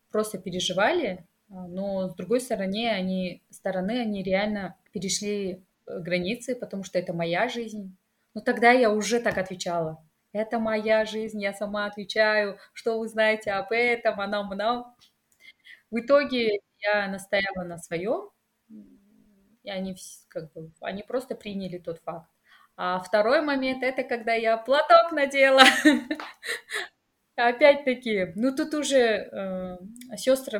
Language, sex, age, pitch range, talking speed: Russian, female, 20-39, 185-235 Hz, 130 wpm